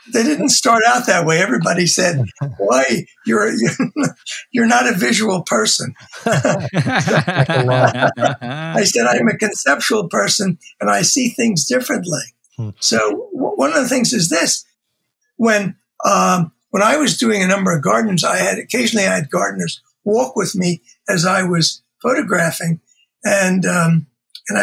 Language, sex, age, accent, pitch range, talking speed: English, male, 60-79, American, 170-255 Hz, 145 wpm